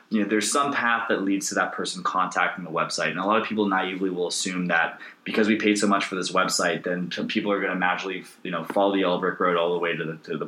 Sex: male